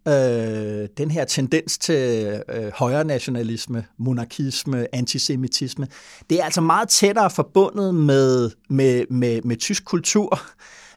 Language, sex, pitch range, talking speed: Danish, male, 120-155 Hz, 105 wpm